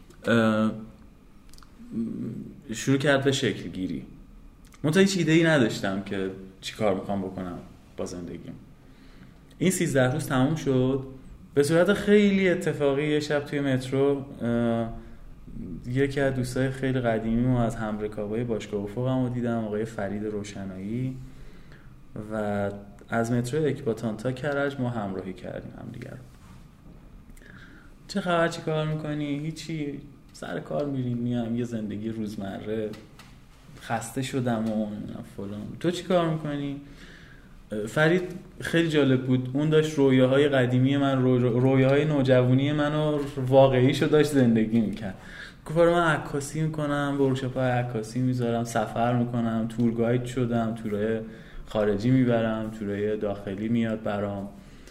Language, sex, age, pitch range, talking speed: Persian, male, 20-39, 110-145 Hz, 130 wpm